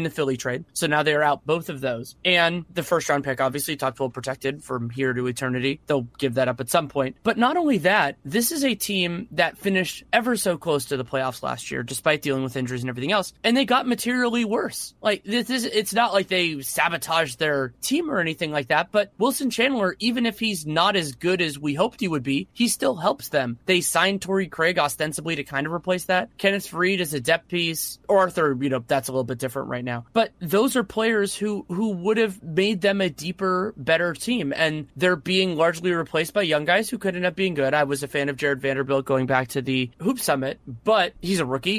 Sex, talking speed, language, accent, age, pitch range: male, 240 wpm, English, American, 30-49, 140-195 Hz